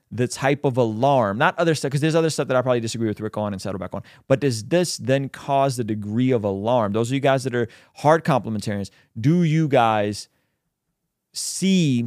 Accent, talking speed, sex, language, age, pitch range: American, 215 wpm, male, English, 30-49, 105-135 Hz